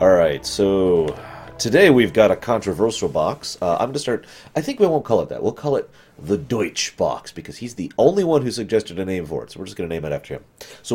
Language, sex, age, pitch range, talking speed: English, male, 30-49, 75-115 Hz, 260 wpm